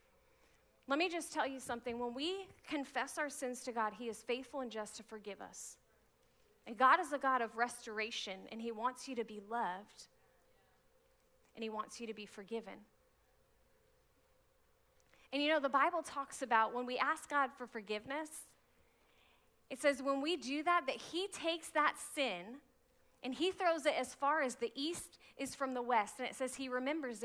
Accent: American